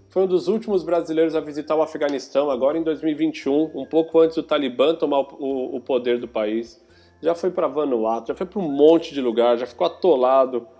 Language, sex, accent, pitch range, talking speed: Portuguese, male, Brazilian, 120-160 Hz, 210 wpm